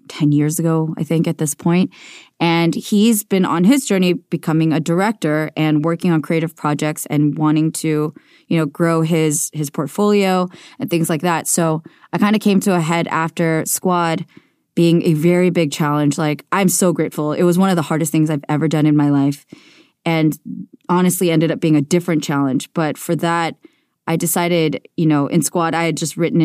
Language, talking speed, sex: English, 200 wpm, female